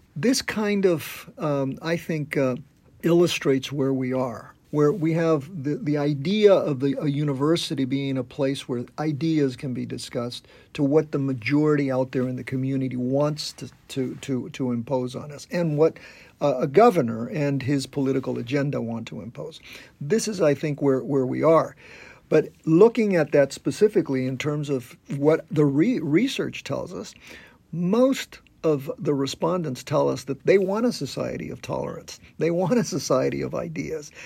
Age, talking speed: 50-69, 175 wpm